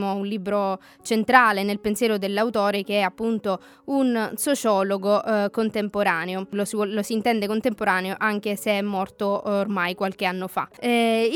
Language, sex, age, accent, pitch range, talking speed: Italian, female, 20-39, native, 205-240 Hz, 145 wpm